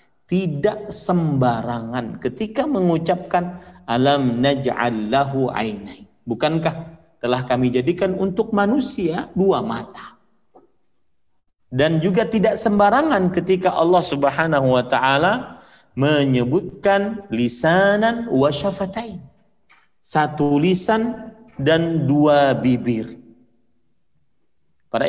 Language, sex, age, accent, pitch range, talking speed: Indonesian, male, 50-69, native, 130-190 Hz, 80 wpm